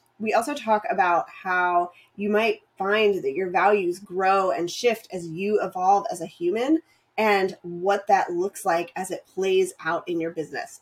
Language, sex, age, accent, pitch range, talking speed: English, female, 20-39, American, 190-250 Hz, 175 wpm